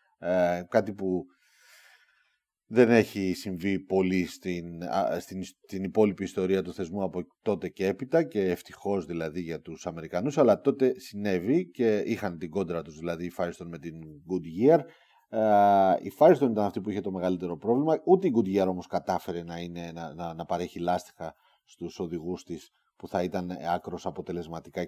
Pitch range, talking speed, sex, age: 90-115 Hz, 165 wpm, male, 30-49